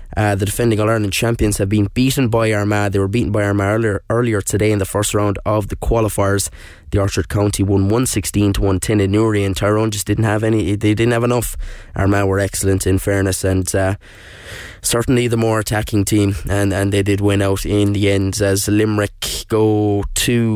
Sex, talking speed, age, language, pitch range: male, 205 wpm, 20-39, English, 100-110 Hz